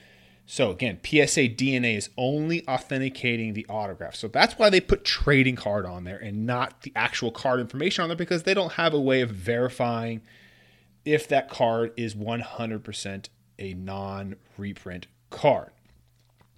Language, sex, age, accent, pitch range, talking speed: English, male, 30-49, American, 110-145 Hz, 150 wpm